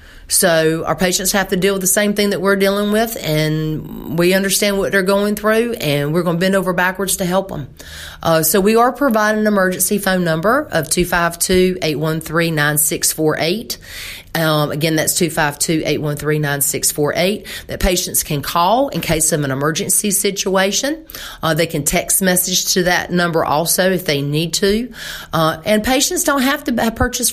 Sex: female